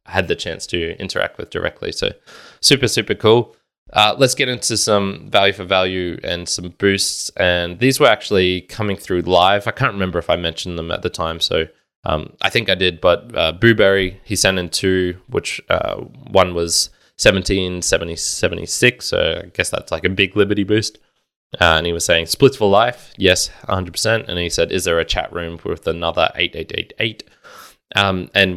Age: 20-39